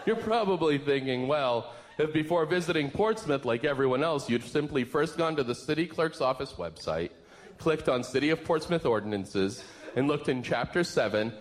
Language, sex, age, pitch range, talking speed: English, male, 40-59, 140-220 Hz, 170 wpm